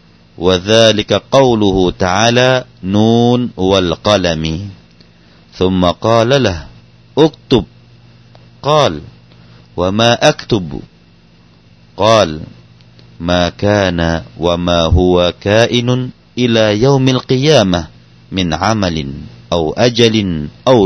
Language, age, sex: Thai, 50-69, male